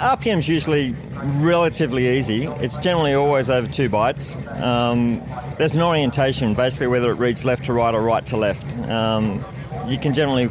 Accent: Australian